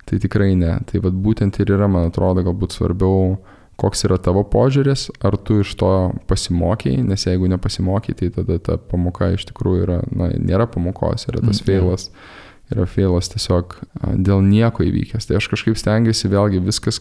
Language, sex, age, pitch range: English, male, 20-39, 95-110 Hz